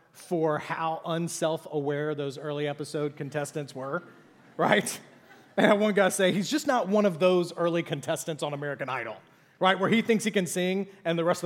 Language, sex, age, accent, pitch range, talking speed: English, male, 30-49, American, 165-240 Hz, 190 wpm